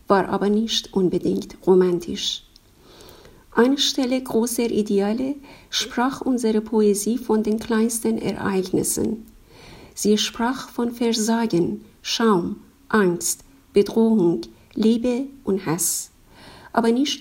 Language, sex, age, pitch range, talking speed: English, female, 50-69, 195-240 Hz, 100 wpm